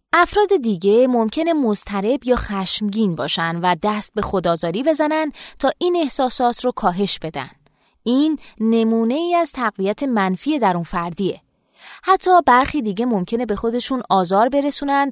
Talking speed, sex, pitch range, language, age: 140 wpm, female, 190-280 Hz, Persian, 20-39